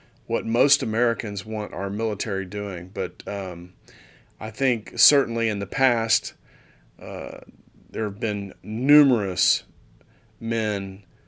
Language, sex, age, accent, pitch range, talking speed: English, male, 40-59, American, 95-115 Hz, 110 wpm